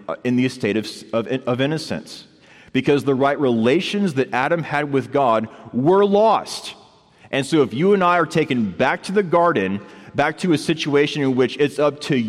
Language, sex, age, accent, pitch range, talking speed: English, male, 30-49, American, 125-160 Hz, 185 wpm